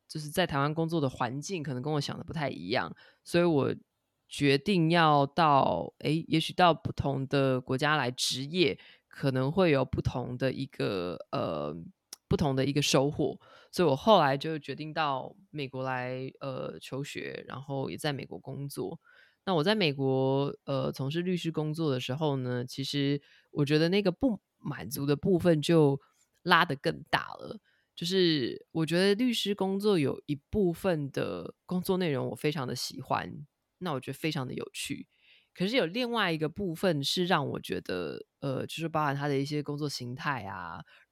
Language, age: Chinese, 20-39